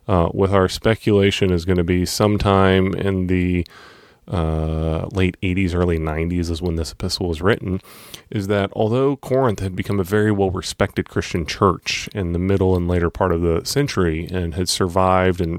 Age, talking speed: 30-49, 175 wpm